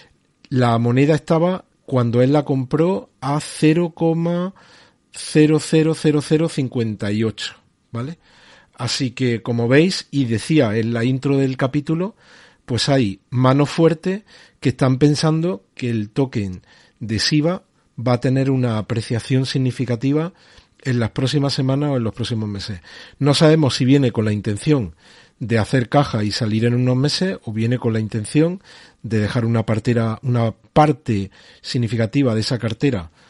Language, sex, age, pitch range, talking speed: Spanish, male, 40-59, 115-145 Hz, 140 wpm